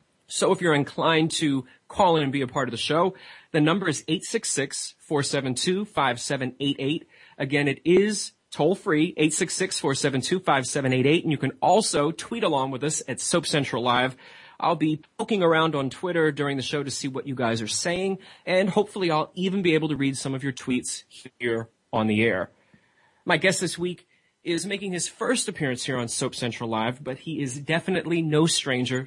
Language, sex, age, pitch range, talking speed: English, male, 30-49, 130-170 Hz, 180 wpm